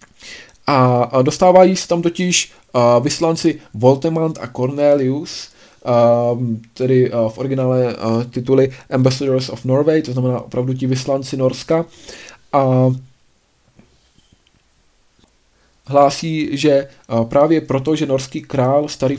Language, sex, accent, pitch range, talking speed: Czech, male, native, 125-150 Hz, 95 wpm